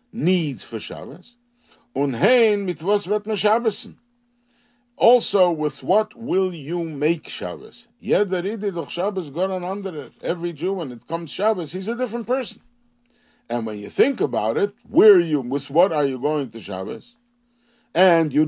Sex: male